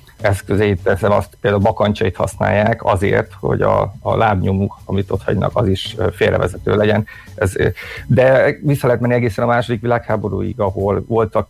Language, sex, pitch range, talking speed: Hungarian, male, 100-115 Hz, 150 wpm